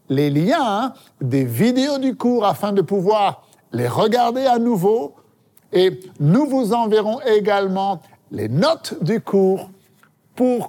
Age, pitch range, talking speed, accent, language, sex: 60-79, 160-230 Hz, 130 wpm, French, French, male